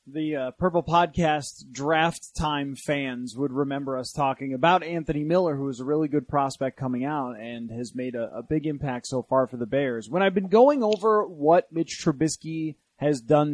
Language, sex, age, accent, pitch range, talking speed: English, male, 30-49, American, 150-190 Hz, 195 wpm